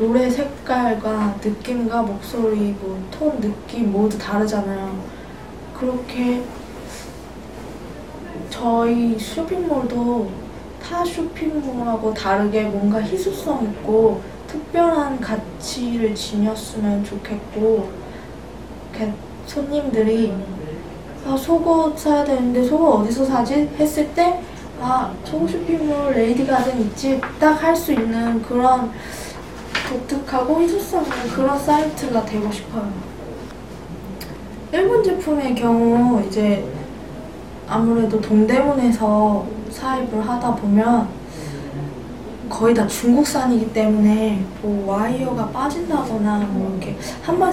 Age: 20-39